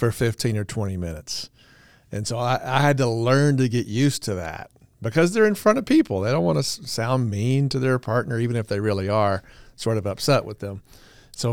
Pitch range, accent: 105-130 Hz, American